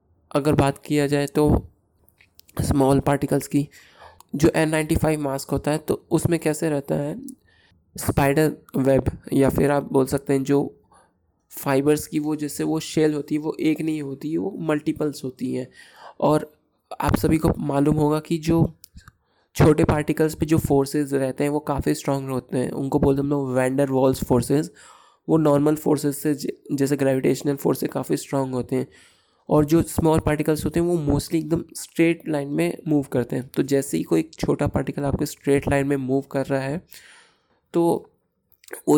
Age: 20-39